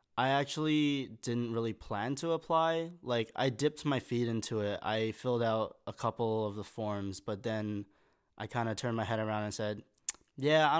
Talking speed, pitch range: 195 wpm, 105-120 Hz